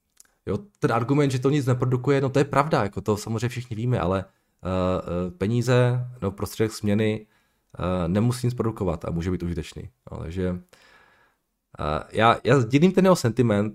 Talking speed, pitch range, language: 165 wpm, 90-110 Hz, Czech